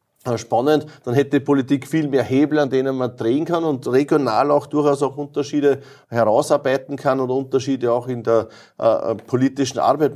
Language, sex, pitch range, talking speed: German, male, 125-145 Hz, 170 wpm